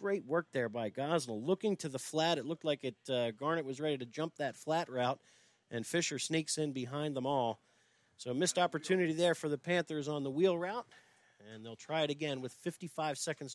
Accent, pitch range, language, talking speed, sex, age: American, 155-200 Hz, English, 215 wpm, male, 40-59